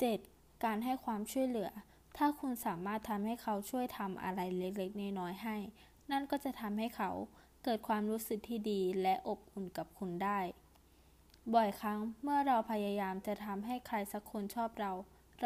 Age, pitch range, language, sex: 20-39, 205-245 Hz, Thai, female